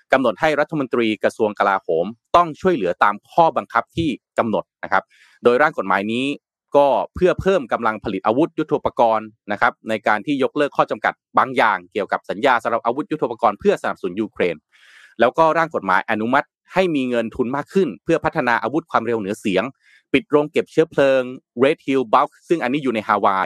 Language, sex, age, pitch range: Thai, male, 30-49, 115-155 Hz